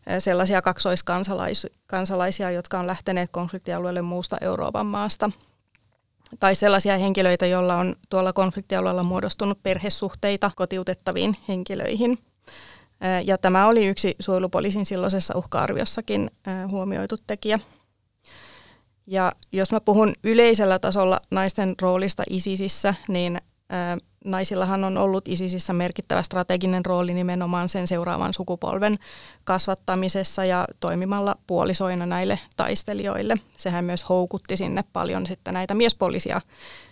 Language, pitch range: Finnish, 180-195 Hz